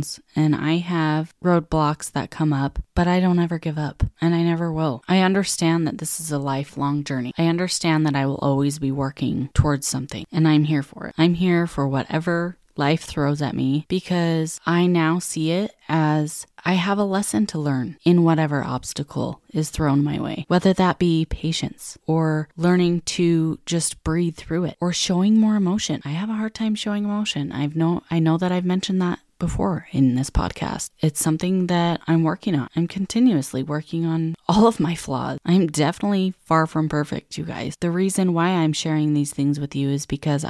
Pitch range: 145-180 Hz